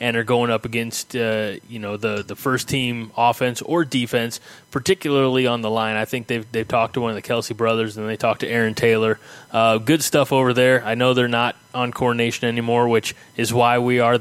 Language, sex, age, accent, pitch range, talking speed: English, male, 20-39, American, 115-140 Hz, 225 wpm